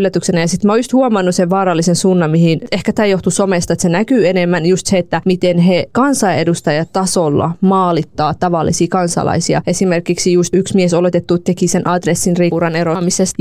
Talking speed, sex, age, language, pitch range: 170 wpm, female, 20-39, Finnish, 170-195 Hz